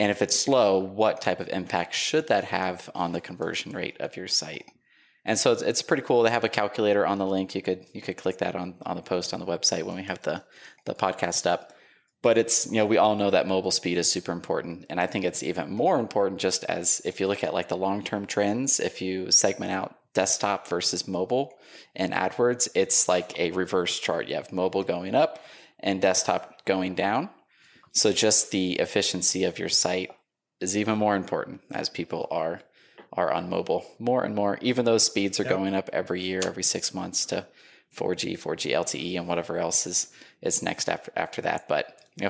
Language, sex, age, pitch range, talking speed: English, male, 20-39, 95-110 Hz, 215 wpm